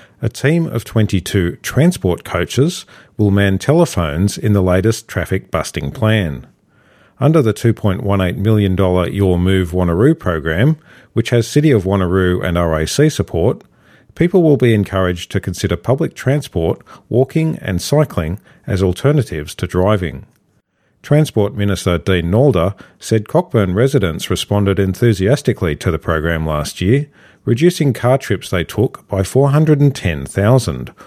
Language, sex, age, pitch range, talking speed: English, male, 40-59, 95-130 Hz, 130 wpm